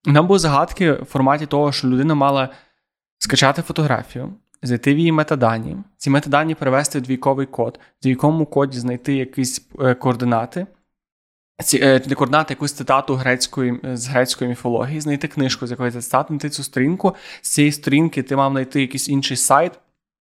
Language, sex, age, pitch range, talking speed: Ukrainian, male, 20-39, 130-150 Hz, 160 wpm